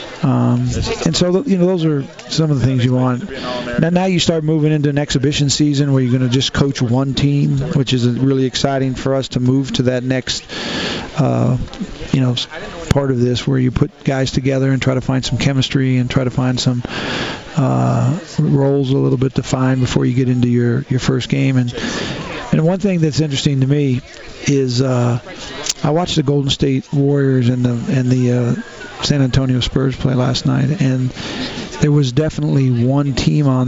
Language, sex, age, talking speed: English, male, 40-59, 200 wpm